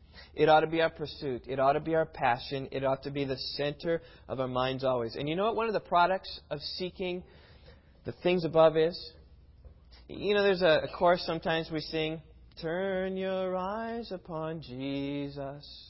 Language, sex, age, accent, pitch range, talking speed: English, male, 30-49, American, 125-175 Hz, 190 wpm